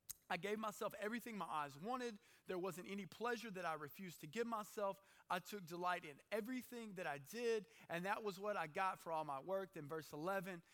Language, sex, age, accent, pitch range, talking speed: English, male, 30-49, American, 160-200 Hz, 210 wpm